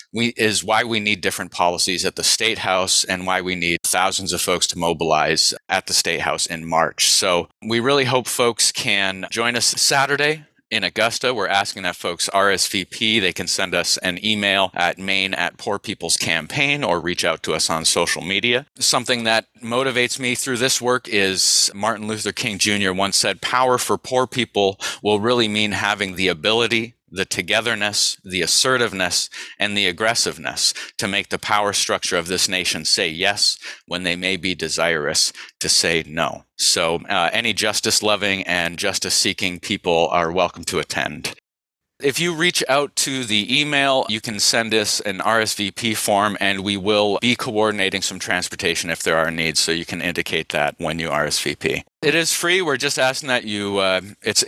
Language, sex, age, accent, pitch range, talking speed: English, male, 30-49, American, 95-120 Hz, 180 wpm